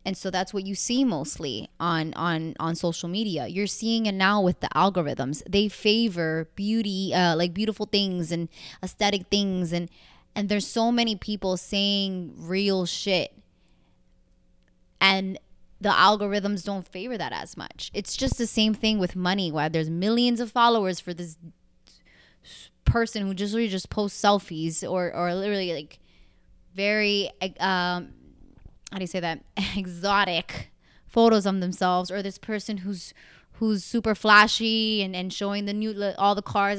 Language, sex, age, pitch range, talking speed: English, female, 20-39, 175-210 Hz, 160 wpm